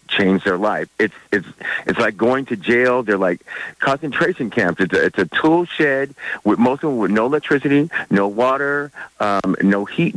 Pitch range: 110-140 Hz